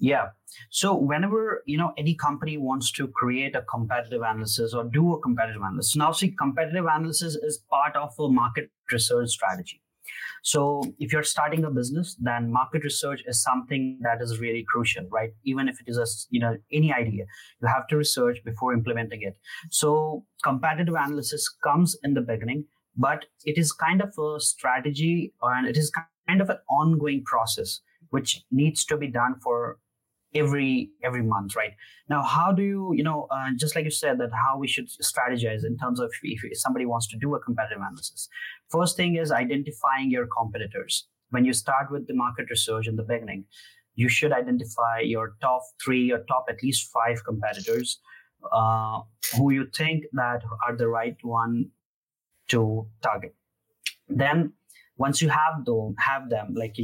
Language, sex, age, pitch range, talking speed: English, male, 30-49, 120-150 Hz, 175 wpm